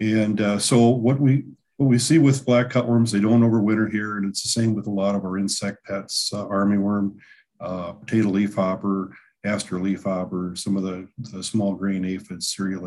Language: English